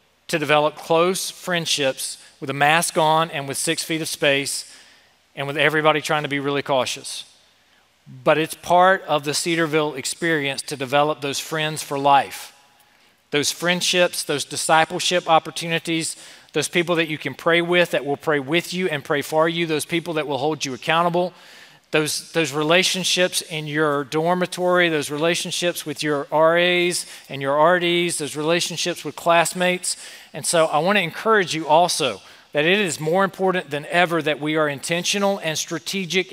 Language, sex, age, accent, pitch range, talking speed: English, male, 40-59, American, 150-180 Hz, 170 wpm